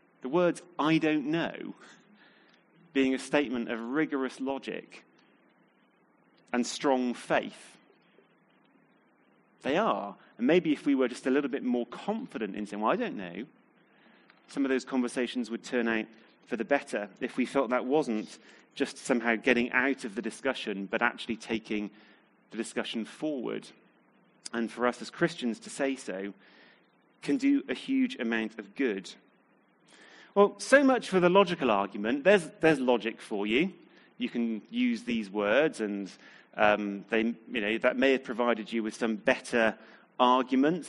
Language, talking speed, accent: English, 155 wpm, British